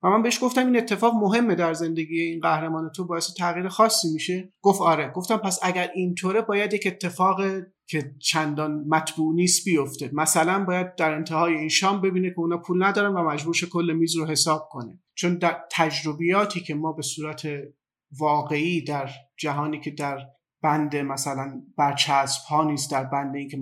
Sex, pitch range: male, 140-185 Hz